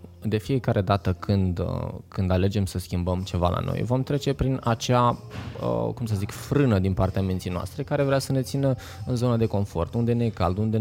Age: 20-39